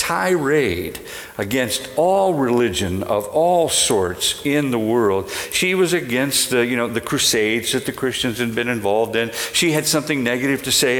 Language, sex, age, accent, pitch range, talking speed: English, male, 50-69, American, 115-155 Hz, 160 wpm